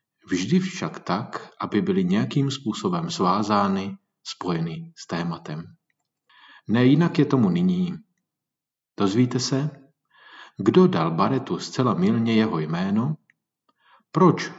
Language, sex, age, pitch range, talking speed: Czech, male, 40-59, 105-170 Hz, 105 wpm